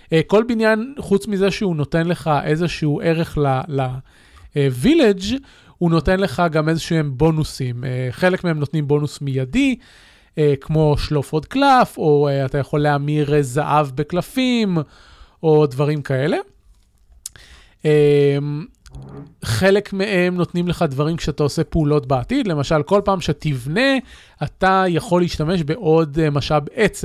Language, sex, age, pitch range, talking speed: Hebrew, male, 30-49, 145-175 Hz, 120 wpm